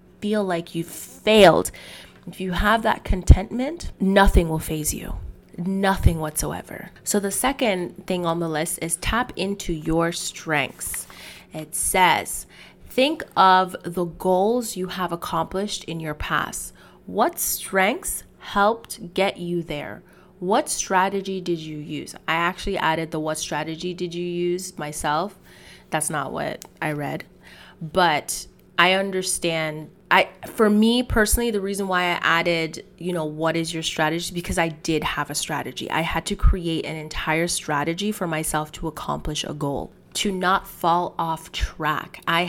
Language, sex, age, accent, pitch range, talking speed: English, female, 20-39, American, 160-190 Hz, 155 wpm